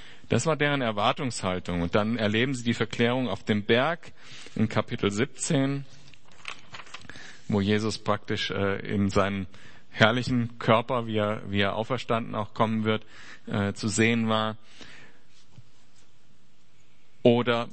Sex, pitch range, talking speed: male, 110-130 Hz, 115 wpm